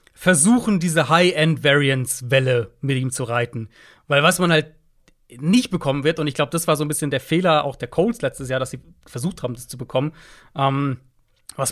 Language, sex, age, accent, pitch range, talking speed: German, male, 30-49, German, 135-165 Hz, 195 wpm